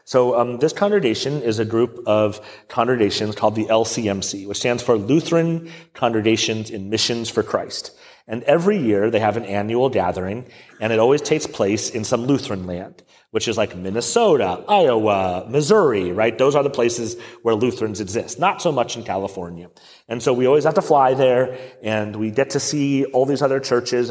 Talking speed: 185 wpm